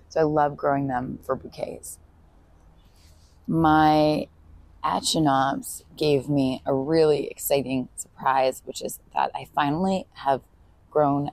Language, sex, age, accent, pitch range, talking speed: English, female, 20-39, American, 135-160 Hz, 115 wpm